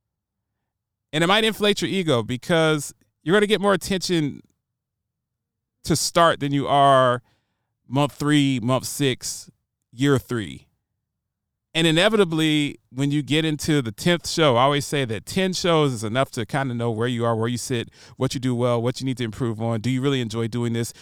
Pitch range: 115-155 Hz